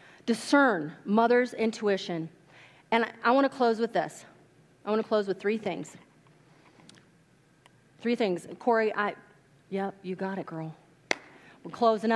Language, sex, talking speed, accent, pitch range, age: English, female, 150 wpm, American, 155-215 Hz, 30-49